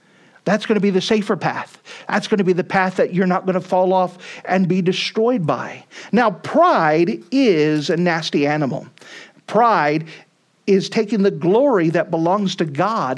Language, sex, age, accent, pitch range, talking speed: English, male, 50-69, American, 170-215 Hz, 180 wpm